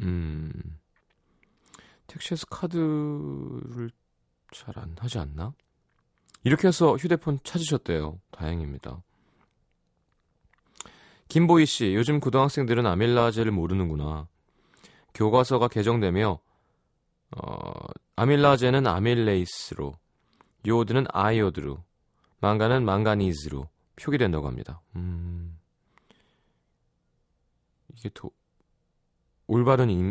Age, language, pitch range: 30-49, Korean, 85-130 Hz